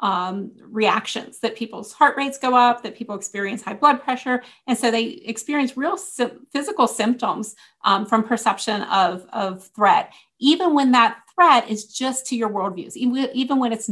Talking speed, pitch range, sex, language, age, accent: 175 wpm, 220-270 Hz, female, English, 30-49, American